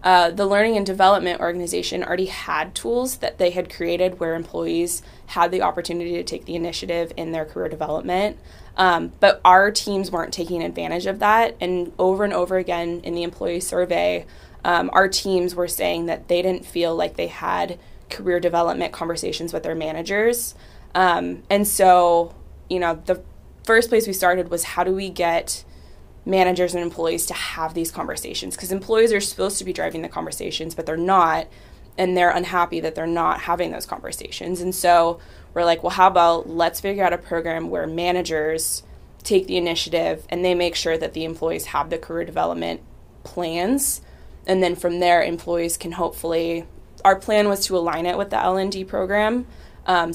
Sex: female